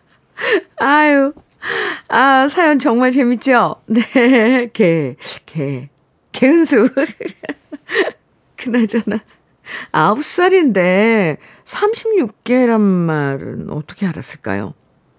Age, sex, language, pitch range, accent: 50-69, female, Korean, 185-255 Hz, native